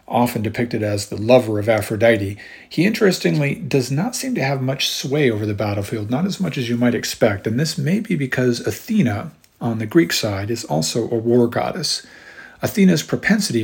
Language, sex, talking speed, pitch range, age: English, male, 190 wpm, 110-125 Hz, 40-59